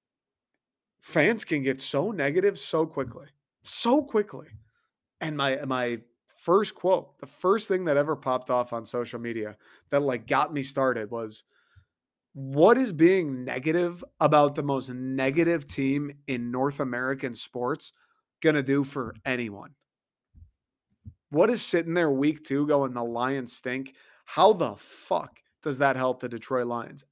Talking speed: 150 wpm